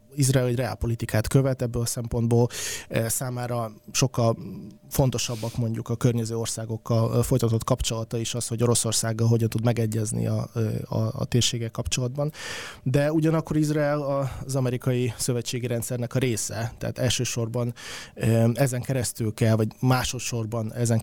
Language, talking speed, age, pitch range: Hungarian, 130 wpm, 20-39, 110-125 Hz